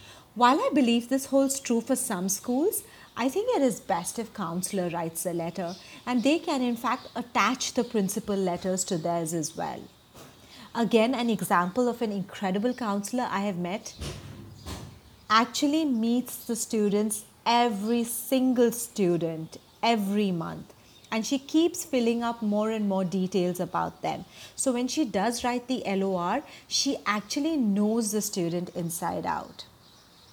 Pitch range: 190-255 Hz